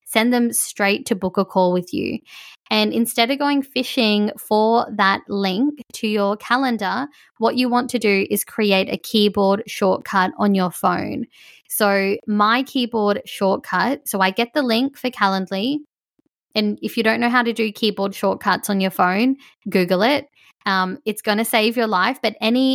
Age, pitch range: 20-39, 195-240 Hz